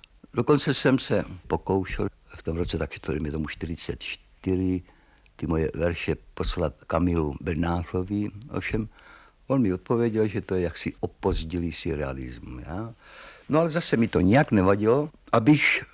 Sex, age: male, 60-79